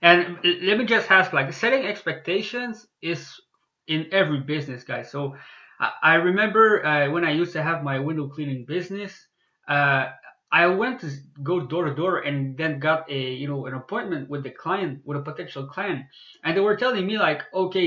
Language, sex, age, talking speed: English, male, 20-39, 190 wpm